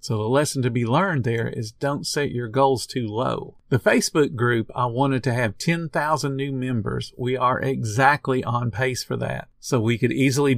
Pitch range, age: 115-145 Hz, 50-69